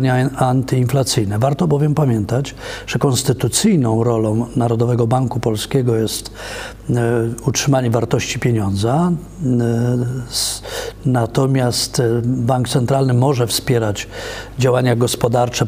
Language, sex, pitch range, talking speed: Polish, male, 115-135 Hz, 80 wpm